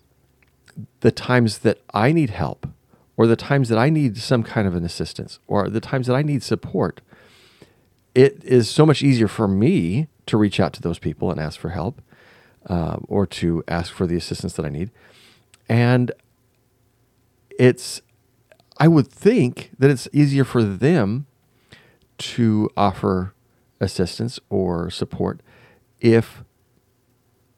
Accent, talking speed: American, 145 wpm